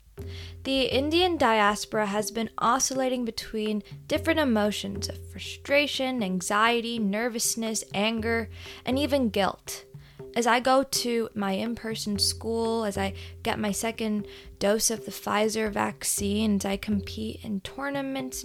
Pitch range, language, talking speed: 195-240 Hz, English, 125 wpm